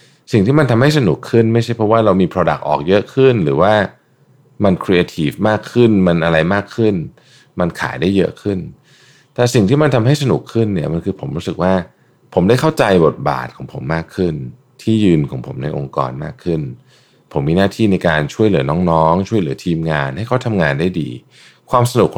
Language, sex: Thai, male